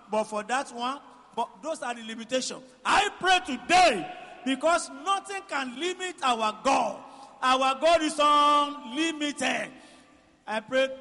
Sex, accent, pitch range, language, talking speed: male, Nigerian, 225-285 Hz, English, 130 wpm